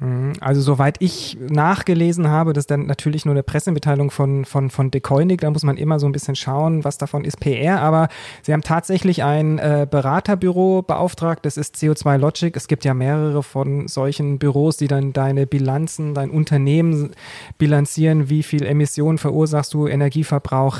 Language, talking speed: German, 175 wpm